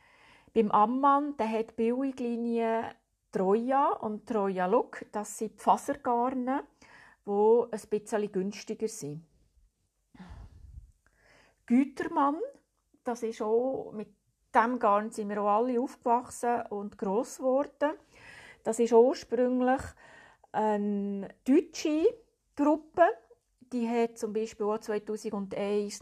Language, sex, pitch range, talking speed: German, female, 210-255 Hz, 100 wpm